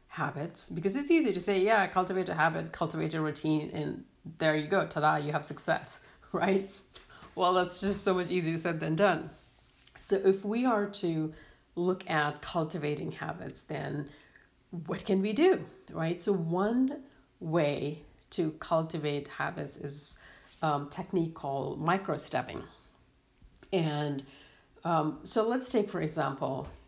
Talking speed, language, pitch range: 145 wpm, English, 155-205 Hz